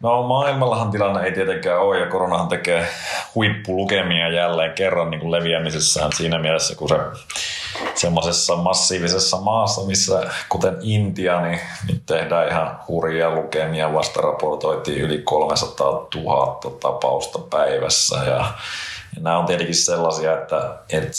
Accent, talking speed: native, 125 wpm